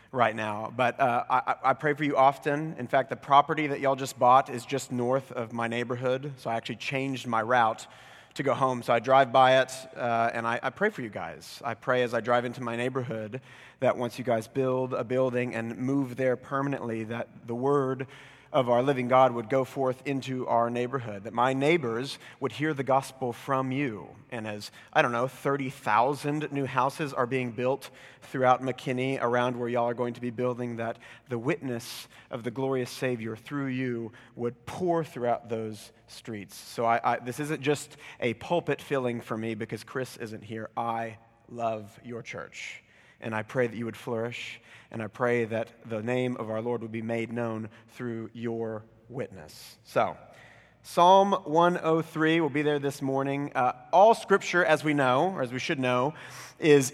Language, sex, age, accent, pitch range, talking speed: English, male, 30-49, American, 120-145 Hz, 190 wpm